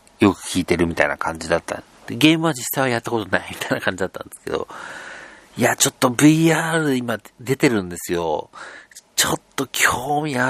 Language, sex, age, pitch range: Japanese, male, 50-69, 90-130 Hz